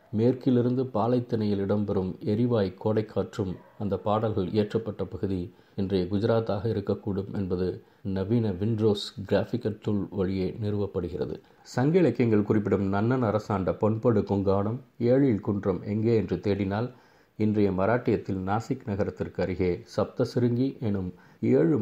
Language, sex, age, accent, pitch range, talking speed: Tamil, male, 50-69, native, 95-115 Hz, 100 wpm